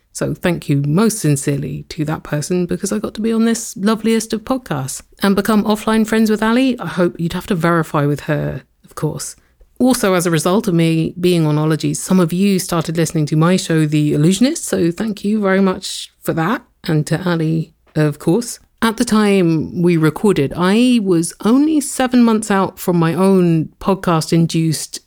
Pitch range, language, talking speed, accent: 150-195 Hz, English, 190 wpm, British